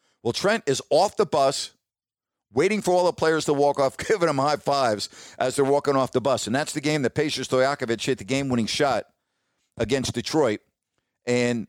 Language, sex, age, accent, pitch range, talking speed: English, male, 50-69, American, 115-150 Hz, 195 wpm